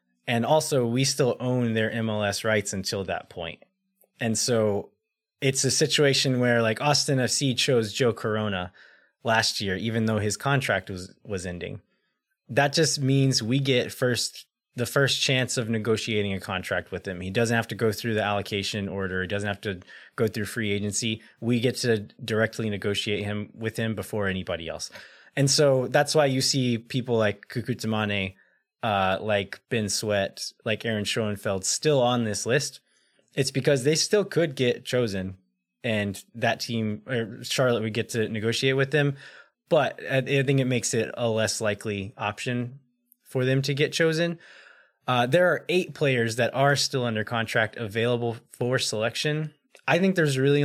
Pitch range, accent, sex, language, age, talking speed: 105-135 Hz, American, male, English, 20-39, 170 wpm